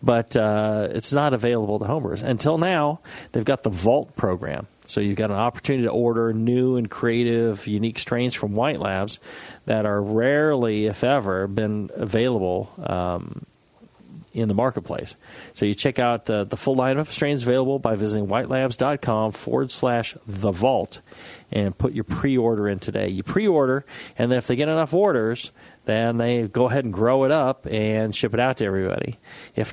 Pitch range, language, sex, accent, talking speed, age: 105-130 Hz, English, male, American, 175 wpm, 40-59